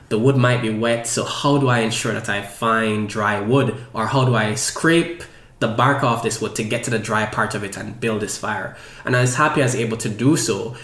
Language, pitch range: English, 110-135 Hz